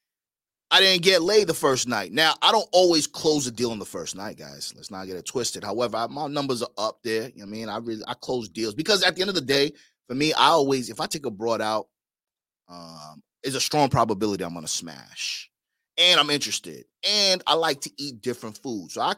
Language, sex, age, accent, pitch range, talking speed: English, male, 30-49, American, 115-175 Hz, 245 wpm